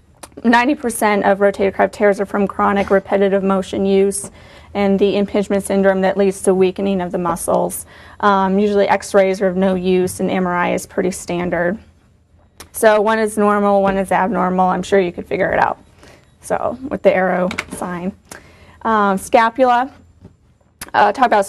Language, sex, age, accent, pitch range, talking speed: English, female, 30-49, American, 190-210 Hz, 160 wpm